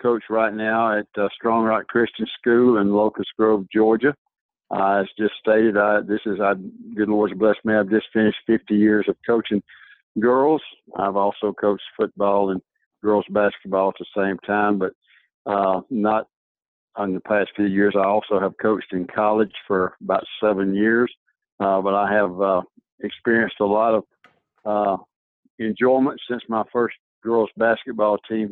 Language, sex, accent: English, male, American